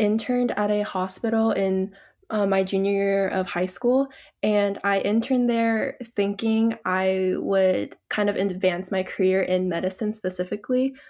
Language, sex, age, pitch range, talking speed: English, female, 10-29, 190-230 Hz, 145 wpm